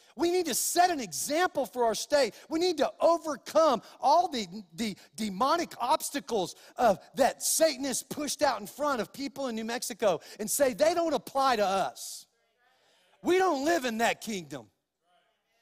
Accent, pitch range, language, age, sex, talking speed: American, 240-315 Hz, English, 40-59, male, 165 wpm